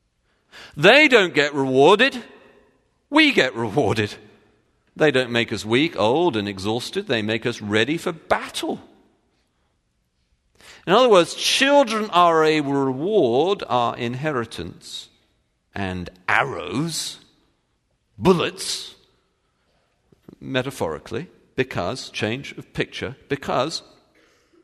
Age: 50-69